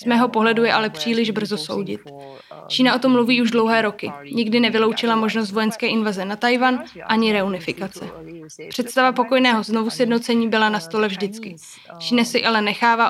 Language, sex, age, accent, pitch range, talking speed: Czech, female, 20-39, native, 205-235 Hz, 160 wpm